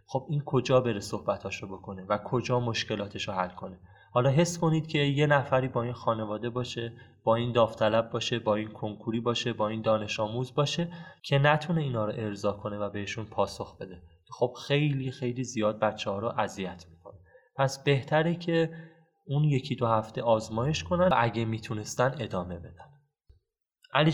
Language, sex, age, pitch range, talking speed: Persian, male, 20-39, 110-130 Hz, 170 wpm